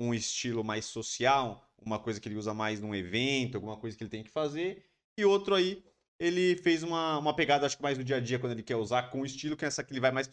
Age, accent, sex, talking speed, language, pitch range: 20-39, Brazilian, male, 275 wpm, Portuguese, 105-140 Hz